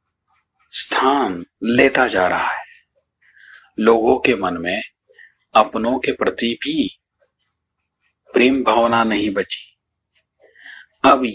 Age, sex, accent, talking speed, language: 50-69, male, native, 95 wpm, Hindi